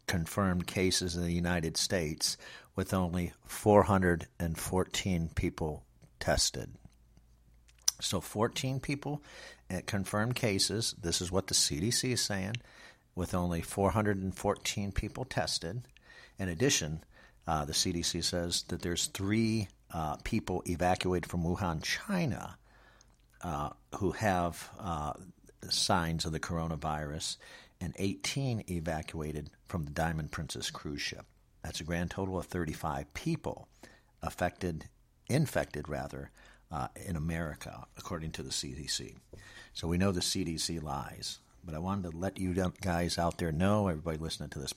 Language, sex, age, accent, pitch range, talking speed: English, male, 50-69, American, 80-100 Hz, 130 wpm